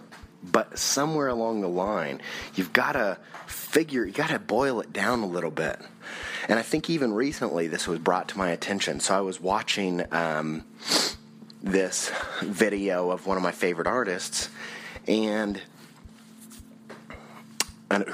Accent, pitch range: American, 95-120 Hz